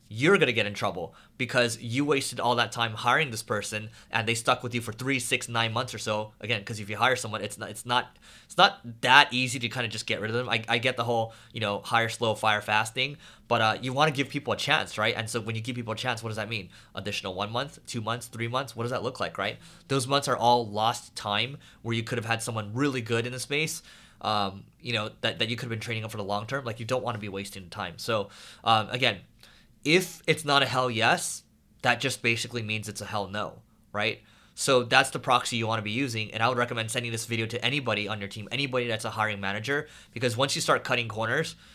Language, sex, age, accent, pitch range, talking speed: English, male, 20-39, American, 110-130 Hz, 265 wpm